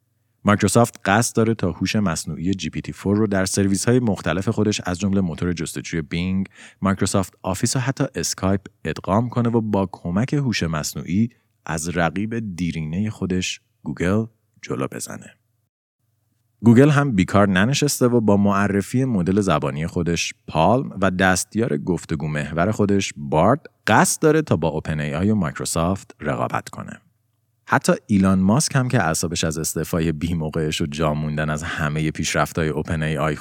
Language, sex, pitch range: Persian, male, 85-115 Hz